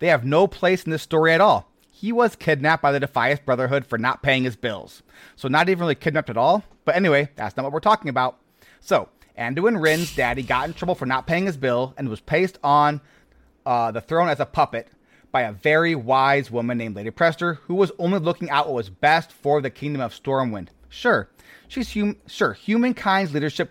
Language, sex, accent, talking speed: English, male, American, 215 wpm